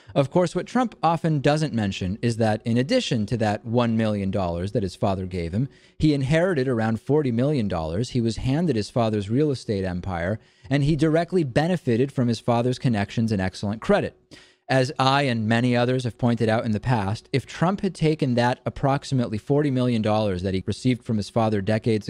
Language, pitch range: English, 105-140 Hz